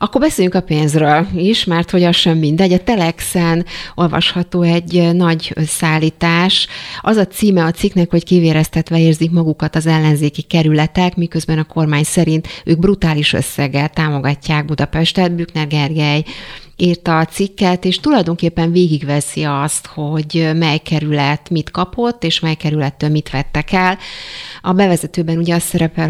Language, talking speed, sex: Hungarian, 145 wpm, female